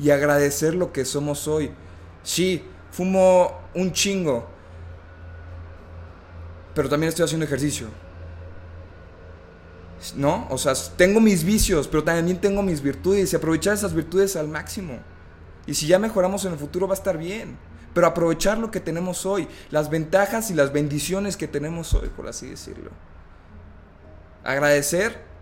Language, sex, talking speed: Spanish, male, 145 wpm